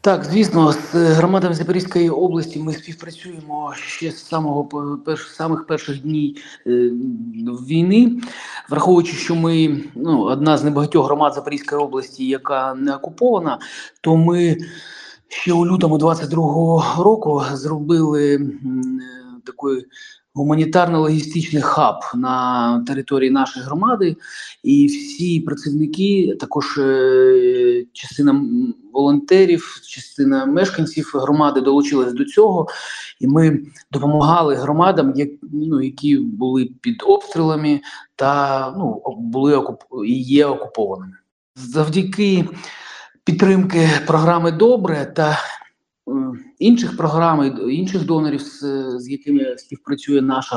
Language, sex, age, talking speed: Ukrainian, male, 30-49, 105 wpm